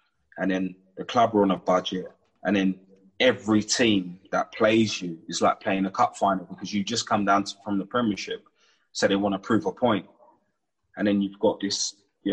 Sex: male